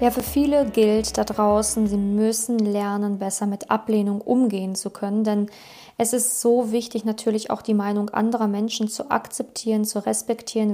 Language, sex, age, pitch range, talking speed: German, female, 20-39, 215-250 Hz, 170 wpm